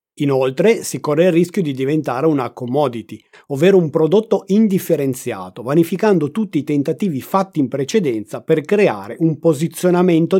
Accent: native